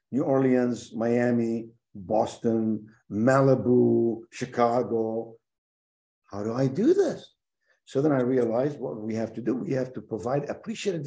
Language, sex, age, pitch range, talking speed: English, male, 50-69, 115-150 Hz, 135 wpm